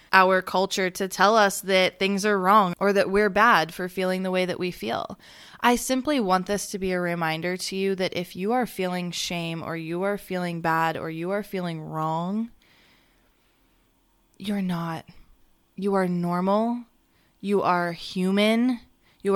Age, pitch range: 20-39, 170-200 Hz